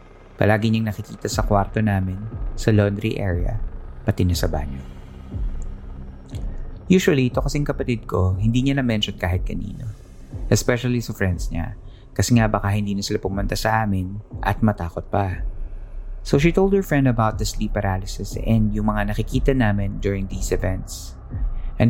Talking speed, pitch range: 155 wpm, 95-115 Hz